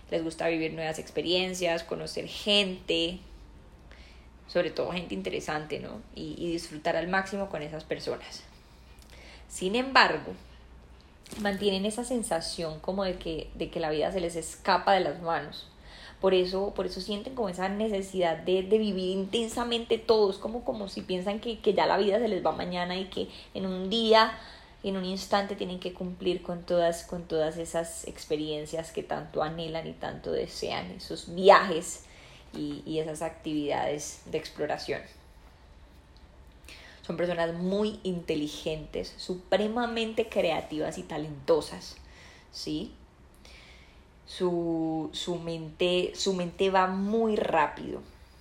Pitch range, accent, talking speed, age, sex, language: 155-210 Hz, Colombian, 135 wpm, 20-39, female, Spanish